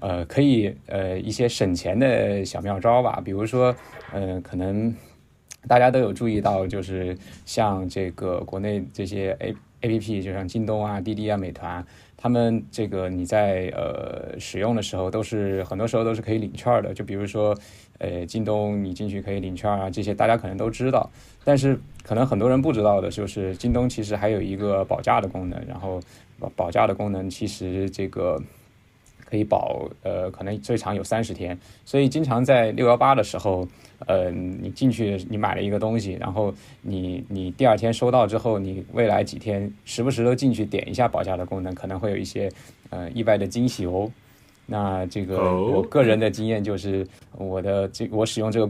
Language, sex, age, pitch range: Chinese, male, 20-39, 95-115 Hz